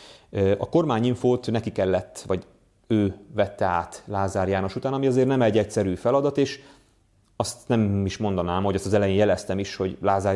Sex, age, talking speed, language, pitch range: male, 30-49, 175 wpm, Hungarian, 100-125 Hz